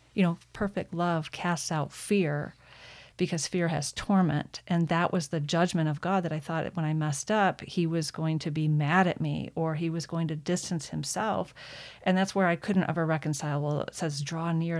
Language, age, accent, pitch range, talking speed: English, 40-59, American, 155-185 Hz, 210 wpm